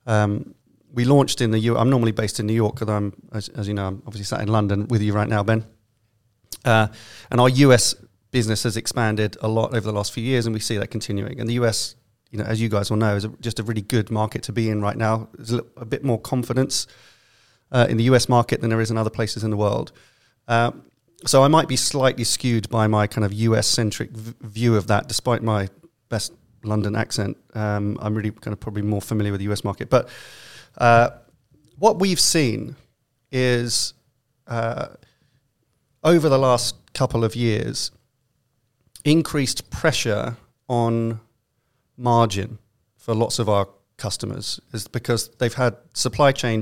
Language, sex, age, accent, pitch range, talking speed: English, male, 30-49, British, 110-125 Hz, 195 wpm